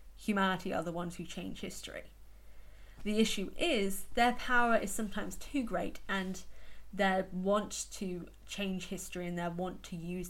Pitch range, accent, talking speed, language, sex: 180-220 Hz, British, 155 wpm, English, female